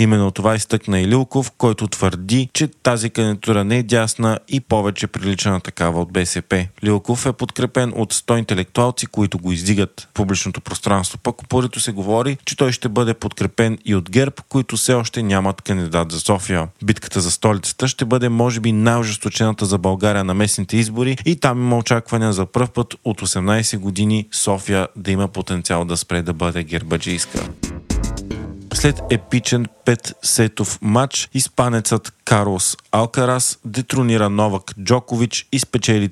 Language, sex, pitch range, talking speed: Bulgarian, male, 100-120 Hz, 165 wpm